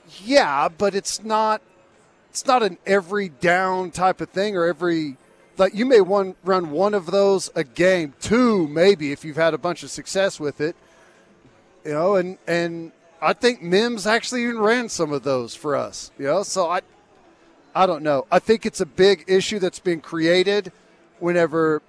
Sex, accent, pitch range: male, American, 170-205 Hz